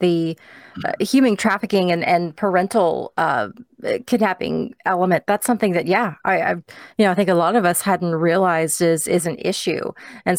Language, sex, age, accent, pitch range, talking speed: English, female, 30-49, American, 170-205 Hz, 180 wpm